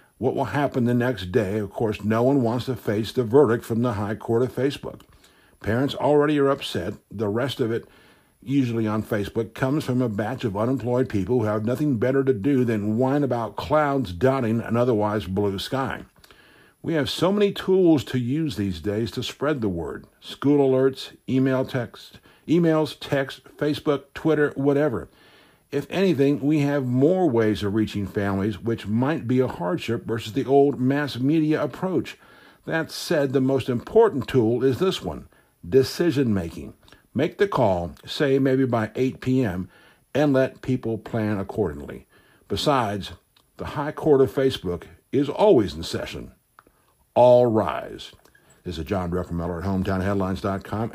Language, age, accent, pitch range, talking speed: English, 60-79, American, 105-140 Hz, 160 wpm